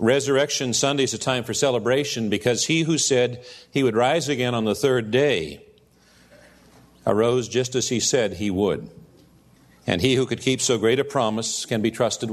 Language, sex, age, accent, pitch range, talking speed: English, male, 50-69, American, 110-135 Hz, 185 wpm